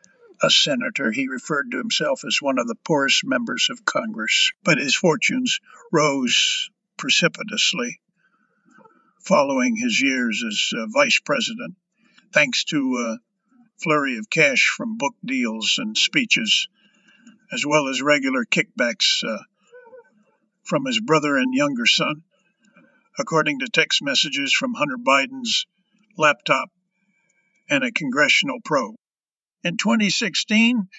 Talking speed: 120 wpm